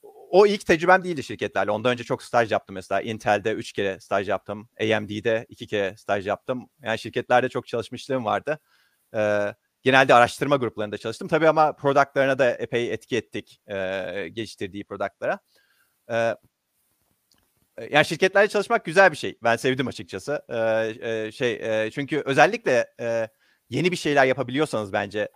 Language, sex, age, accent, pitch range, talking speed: Turkish, male, 40-59, native, 115-160 Hz, 150 wpm